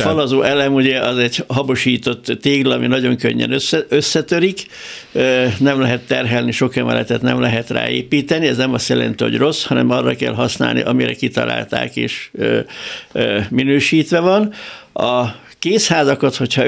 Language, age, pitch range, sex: Hungarian, 60-79, 120-140 Hz, male